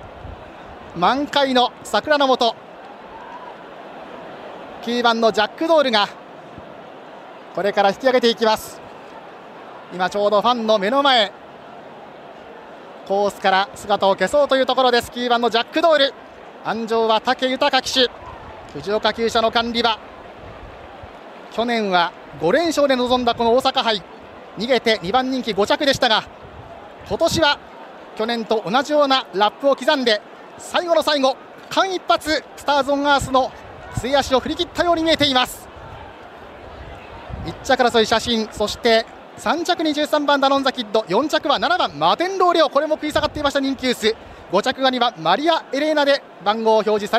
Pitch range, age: 225-290 Hz, 40-59